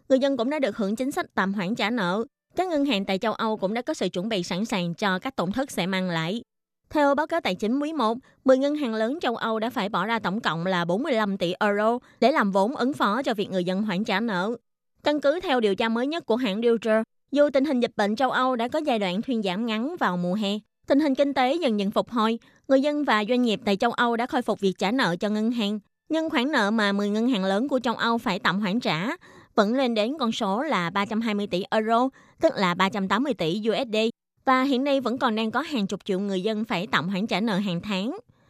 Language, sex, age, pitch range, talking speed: Vietnamese, female, 20-39, 200-260 Hz, 260 wpm